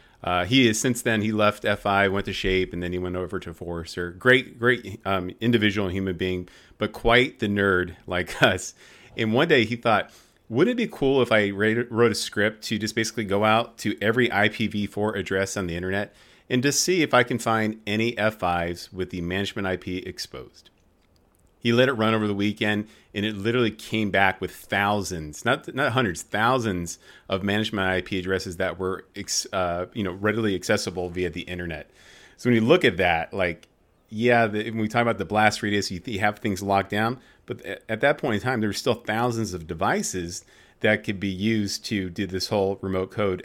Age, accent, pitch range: 30-49, American, 90-110 Hz